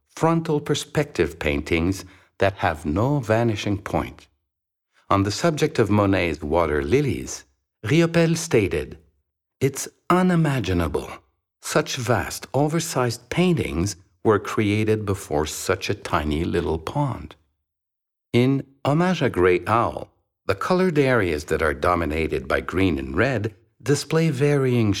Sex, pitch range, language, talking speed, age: male, 90-140 Hz, English, 115 wpm, 60-79